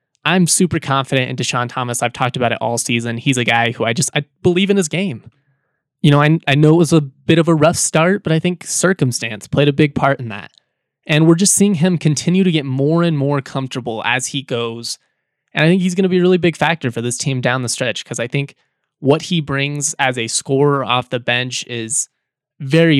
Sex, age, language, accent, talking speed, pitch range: male, 20-39, English, American, 240 wpm, 125-160 Hz